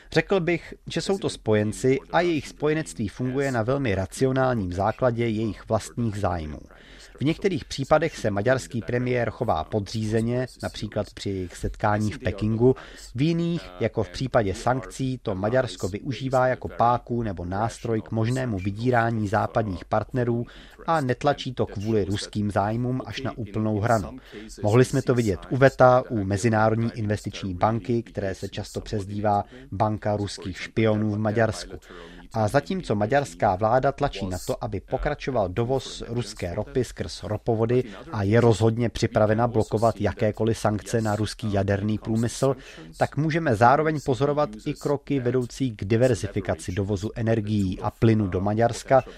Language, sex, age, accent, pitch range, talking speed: Czech, male, 30-49, native, 105-130 Hz, 145 wpm